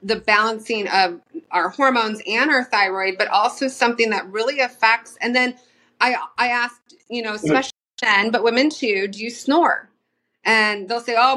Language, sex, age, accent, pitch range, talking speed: English, female, 30-49, American, 200-265 Hz, 175 wpm